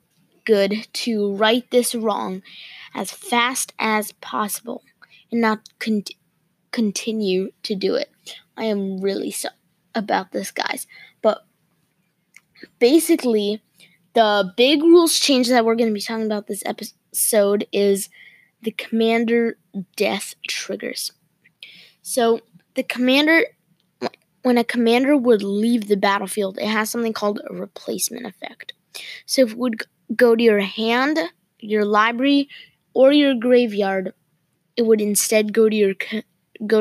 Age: 20-39